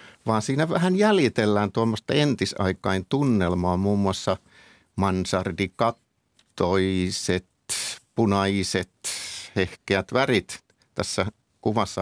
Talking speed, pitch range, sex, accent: 75 wpm, 100-130 Hz, male, native